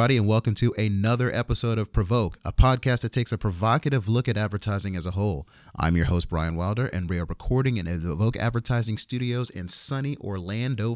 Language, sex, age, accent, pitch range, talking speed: English, male, 30-49, American, 90-125 Hz, 195 wpm